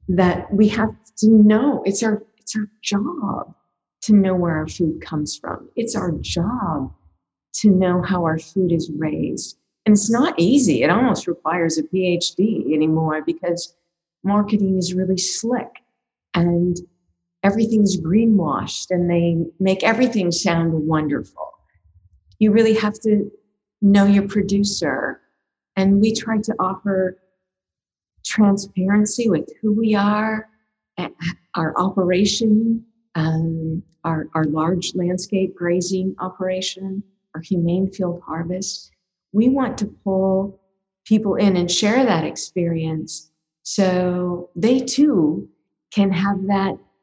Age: 40-59